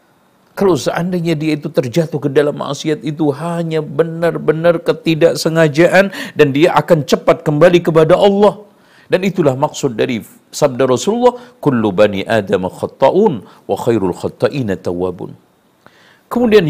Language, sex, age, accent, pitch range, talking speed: Indonesian, male, 50-69, native, 135-185 Hz, 120 wpm